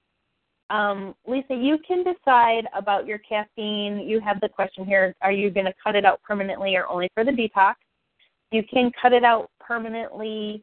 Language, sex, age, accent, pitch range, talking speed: English, female, 30-49, American, 190-220 Hz, 180 wpm